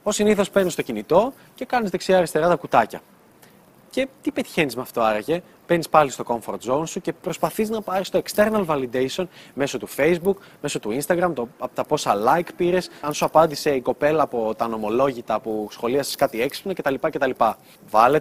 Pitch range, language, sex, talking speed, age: 140-180 Hz, Greek, male, 180 wpm, 20-39